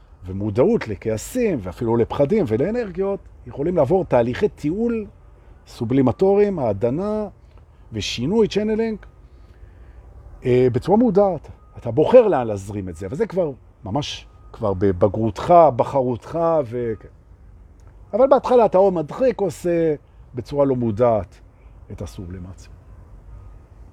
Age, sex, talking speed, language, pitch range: 50-69, male, 100 wpm, Hebrew, 95-150 Hz